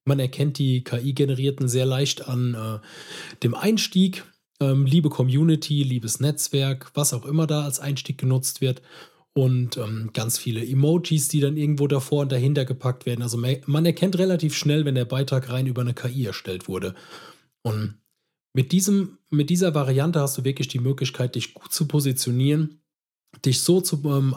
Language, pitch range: German, 125-150 Hz